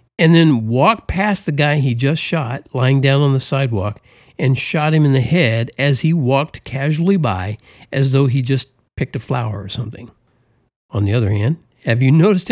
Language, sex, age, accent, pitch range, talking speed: English, male, 50-69, American, 110-140 Hz, 195 wpm